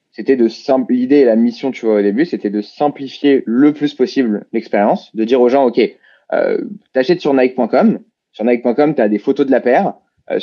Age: 20-39